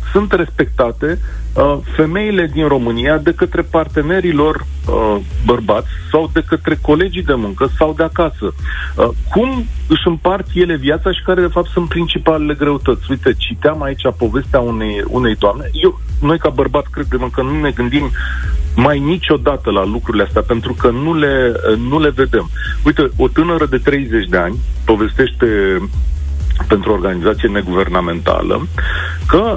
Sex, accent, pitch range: male, native, 110-155 Hz